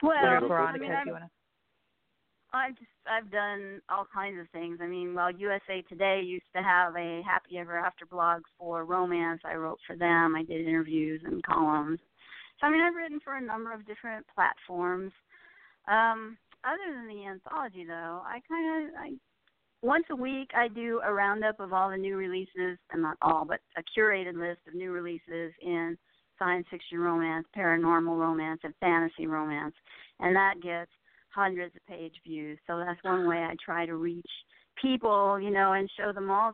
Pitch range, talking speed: 170-220 Hz, 180 wpm